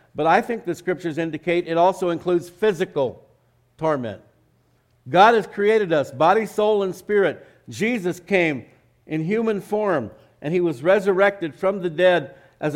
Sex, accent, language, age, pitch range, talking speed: male, American, English, 60-79, 135-185 Hz, 150 wpm